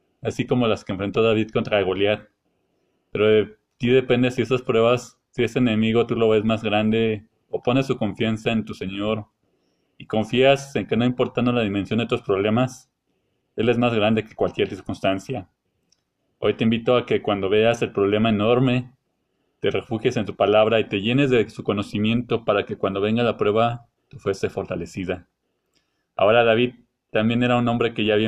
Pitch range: 105-125 Hz